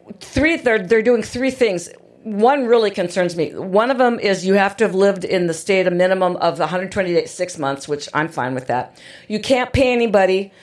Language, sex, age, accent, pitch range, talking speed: English, female, 50-69, American, 185-245 Hz, 205 wpm